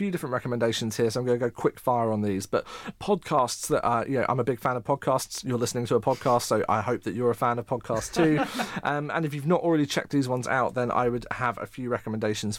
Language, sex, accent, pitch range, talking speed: English, male, British, 115-140 Hz, 270 wpm